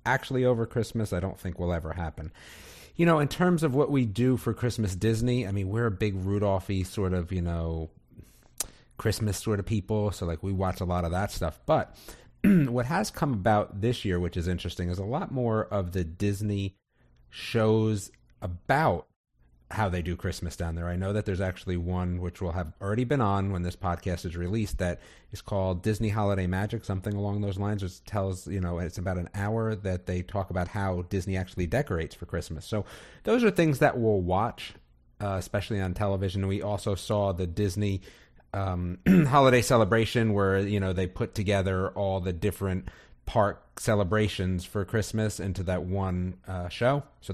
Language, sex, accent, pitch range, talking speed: English, male, American, 90-110 Hz, 190 wpm